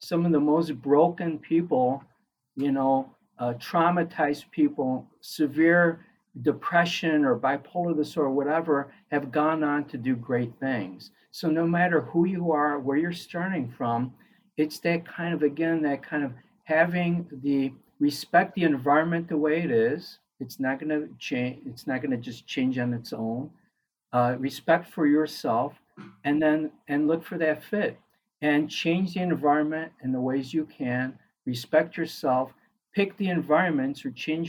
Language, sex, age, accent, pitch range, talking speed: English, male, 50-69, American, 140-170 Hz, 155 wpm